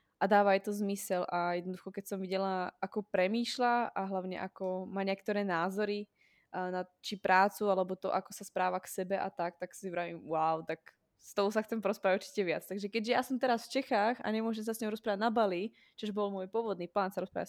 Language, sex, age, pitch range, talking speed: Slovak, female, 20-39, 185-210 Hz, 220 wpm